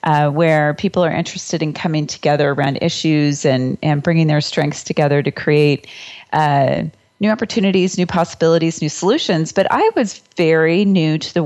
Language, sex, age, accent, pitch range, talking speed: English, female, 30-49, American, 145-175 Hz, 170 wpm